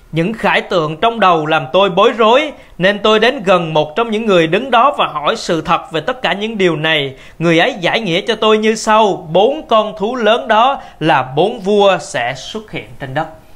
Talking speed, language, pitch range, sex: 220 wpm, Vietnamese, 175-270 Hz, male